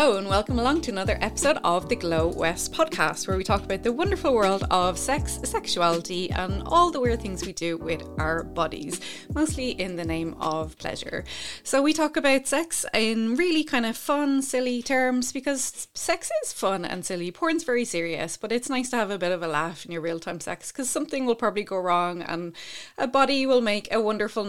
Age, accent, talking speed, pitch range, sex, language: 20-39, Irish, 210 wpm, 180-260 Hz, female, English